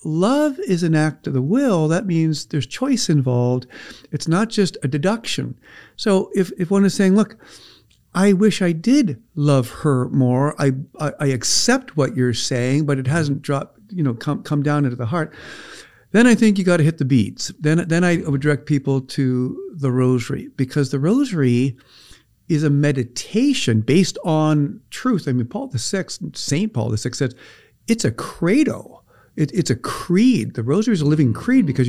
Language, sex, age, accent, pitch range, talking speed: English, male, 50-69, American, 135-195 Hz, 185 wpm